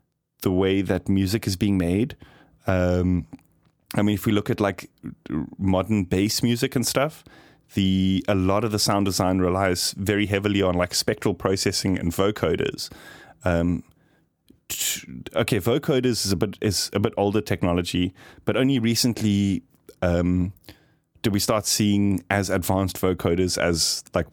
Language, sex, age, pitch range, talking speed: English, male, 30-49, 90-110 Hz, 155 wpm